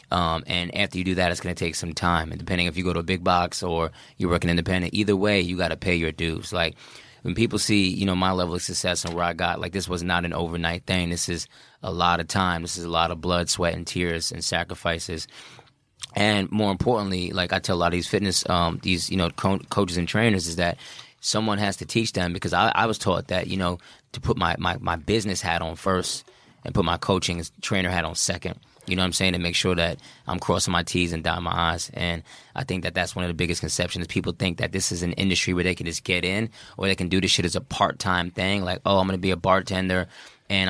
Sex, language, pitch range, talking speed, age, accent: male, English, 85-95 Hz, 265 wpm, 20-39, American